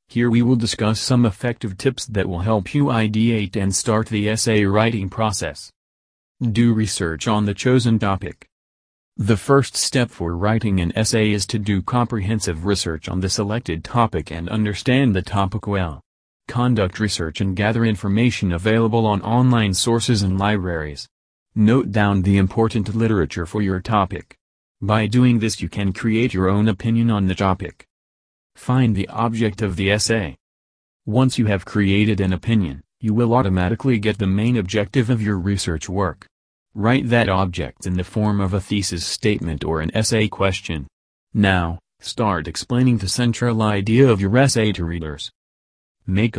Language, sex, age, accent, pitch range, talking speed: English, male, 40-59, American, 90-115 Hz, 160 wpm